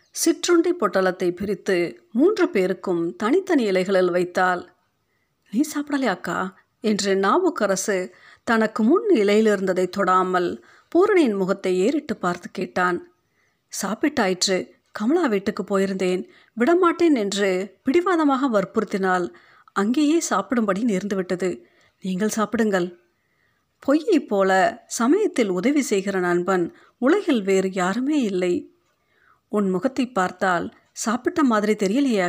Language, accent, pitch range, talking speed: Tamil, native, 185-260 Hz, 95 wpm